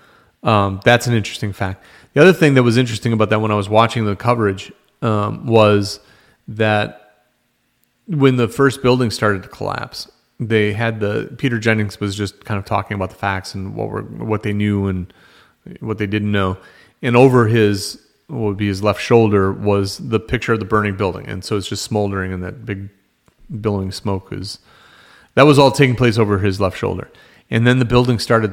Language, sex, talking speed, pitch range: English, male, 195 wpm, 105-125 Hz